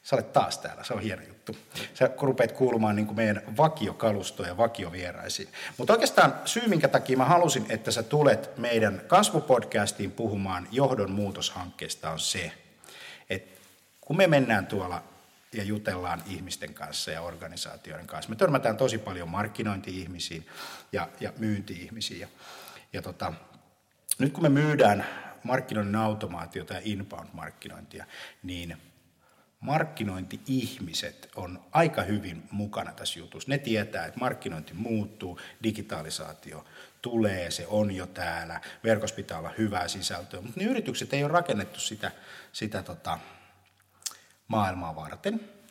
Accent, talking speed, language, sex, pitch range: native, 130 wpm, Finnish, male, 95-130 Hz